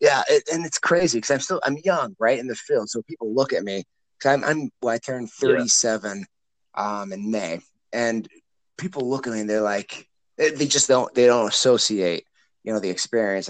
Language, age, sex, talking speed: English, 30-49, male, 205 wpm